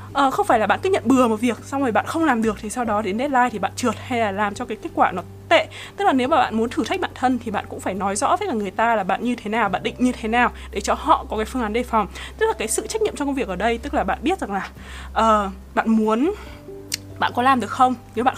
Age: 20-39